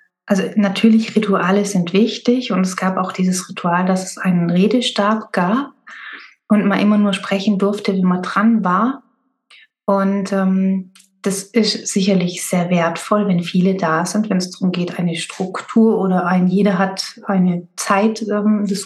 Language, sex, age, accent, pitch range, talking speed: German, female, 30-49, German, 185-220 Hz, 160 wpm